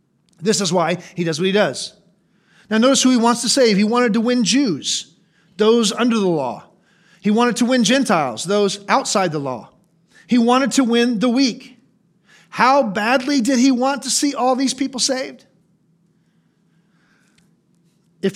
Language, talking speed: English, 165 wpm